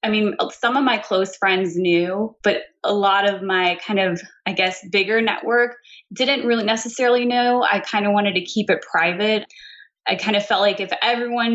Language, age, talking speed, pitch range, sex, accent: English, 20-39, 195 wpm, 180-205 Hz, female, American